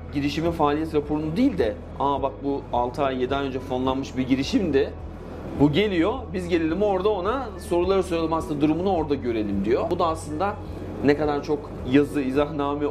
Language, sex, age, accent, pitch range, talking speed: Turkish, male, 40-59, native, 115-150 Hz, 170 wpm